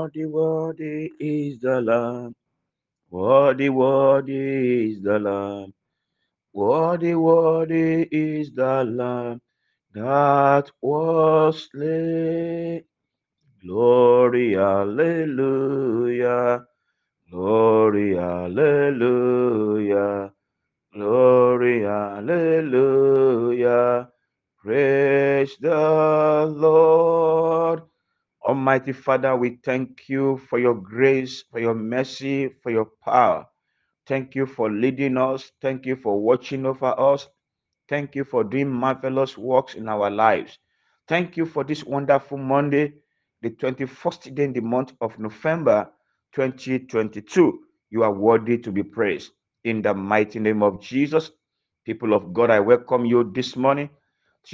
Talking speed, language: 105 wpm, English